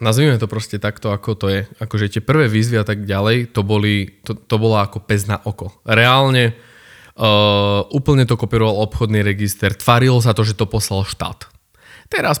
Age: 20-39